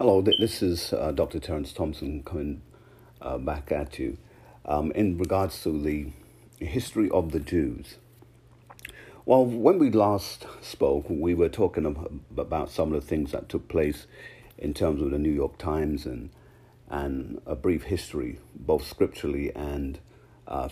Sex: male